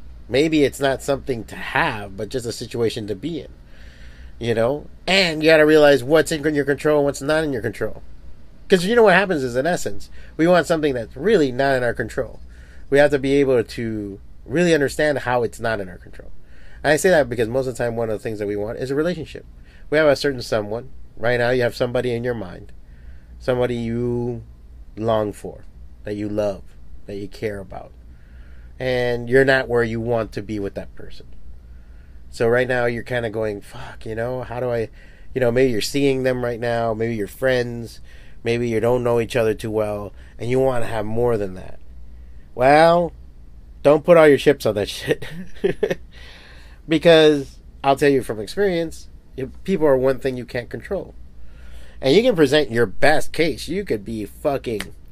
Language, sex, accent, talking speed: English, male, American, 205 wpm